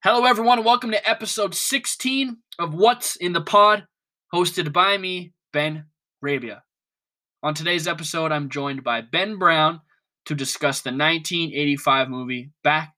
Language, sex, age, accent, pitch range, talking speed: English, male, 10-29, American, 145-190 Hz, 140 wpm